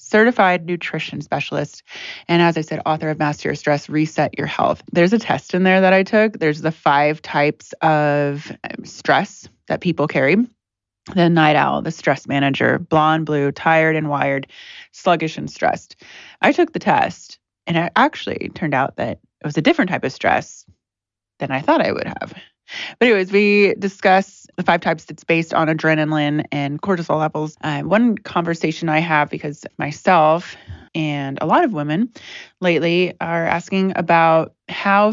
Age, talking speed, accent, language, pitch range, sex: 20-39, 170 wpm, American, English, 155-195 Hz, female